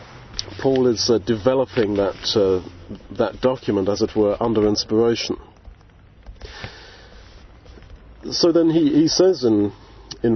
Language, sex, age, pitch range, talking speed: English, male, 50-69, 100-125 Hz, 115 wpm